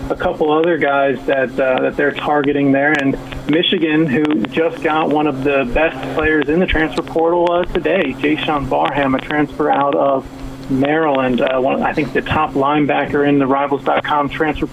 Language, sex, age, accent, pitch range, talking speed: English, male, 30-49, American, 140-155 Hz, 185 wpm